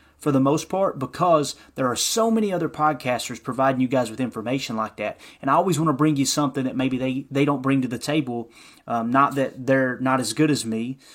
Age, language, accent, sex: 30-49, English, American, male